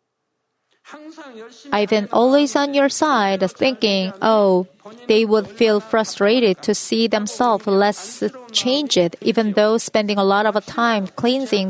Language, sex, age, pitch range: Korean, female, 30-49, 205-260 Hz